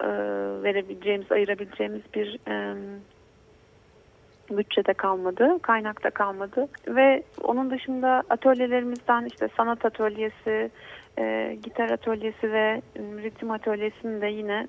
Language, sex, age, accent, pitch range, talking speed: Turkish, female, 30-49, native, 195-235 Hz, 90 wpm